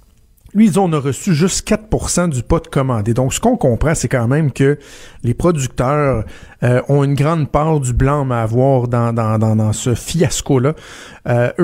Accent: Canadian